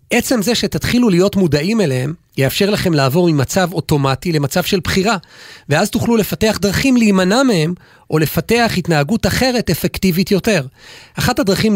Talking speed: 145 wpm